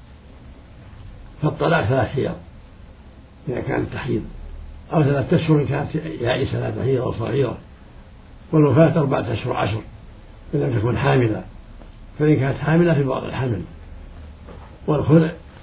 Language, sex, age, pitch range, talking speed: Arabic, male, 60-79, 95-140 Hz, 115 wpm